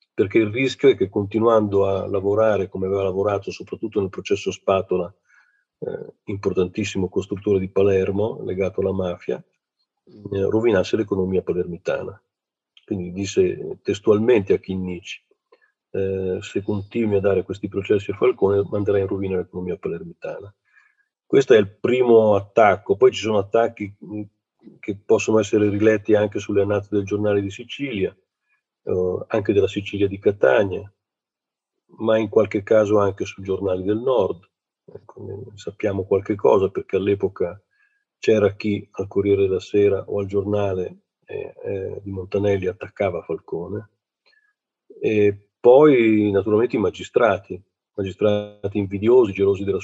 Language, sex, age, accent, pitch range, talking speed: Italian, male, 40-59, native, 100-120 Hz, 130 wpm